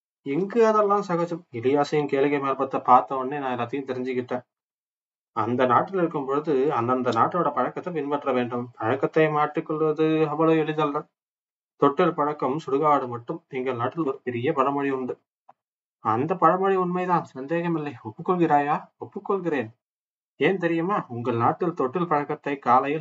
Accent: native